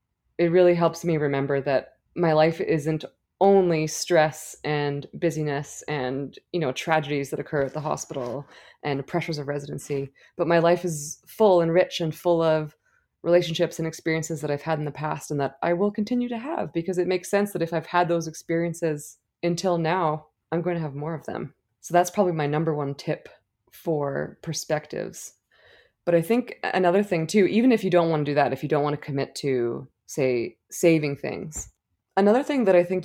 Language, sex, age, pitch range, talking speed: English, female, 20-39, 145-175 Hz, 195 wpm